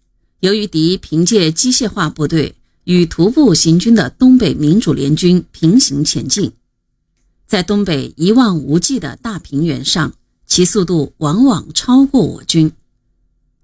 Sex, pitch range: female, 150-200 Hz